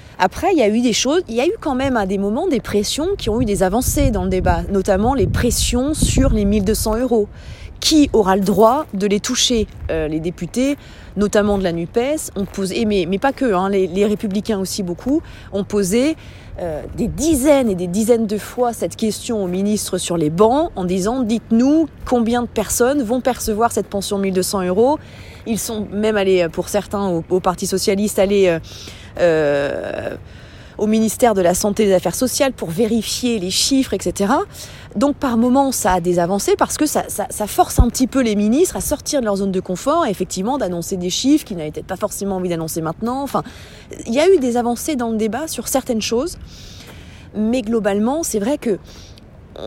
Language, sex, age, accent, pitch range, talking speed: French, female, 20-39, French, 190-250 Hz, 205 wpm